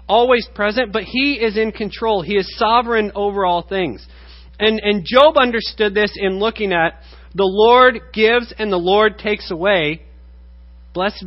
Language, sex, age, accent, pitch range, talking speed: English, male, 30-49, American, 145-220 Hz, 160 wpm